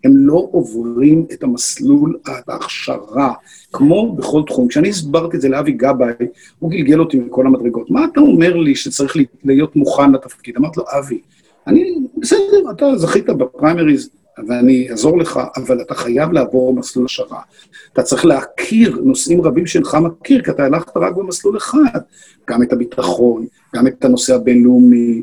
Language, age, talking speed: Hebrew, 50-69, 155 wpm